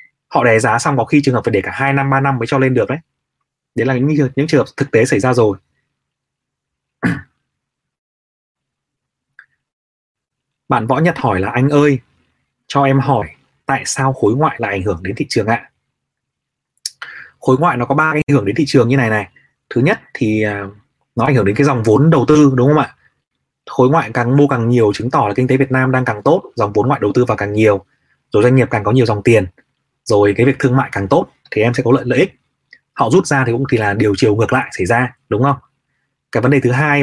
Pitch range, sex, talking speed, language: 115-140 Hz, male, 240 wpm, Vietnamese